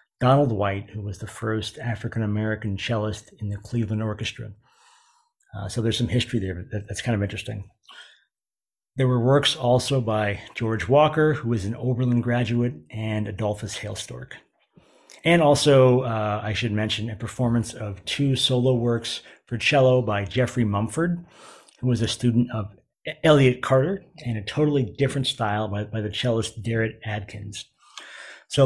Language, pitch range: English, 105-130 Hz